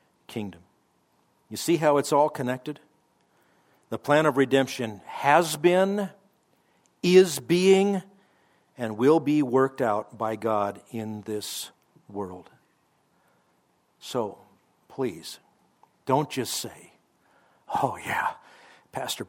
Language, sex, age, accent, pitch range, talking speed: English, male, 60-79, American, 110-155 Hz, 105 wpm